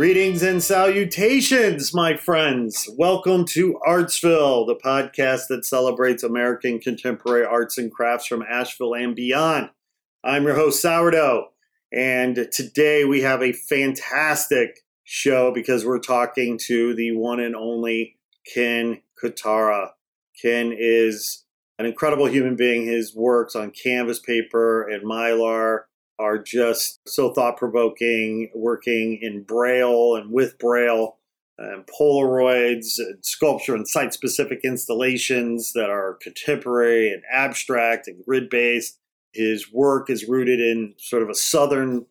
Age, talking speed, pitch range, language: 40-59, 125 wpm, 115-135 Hz, English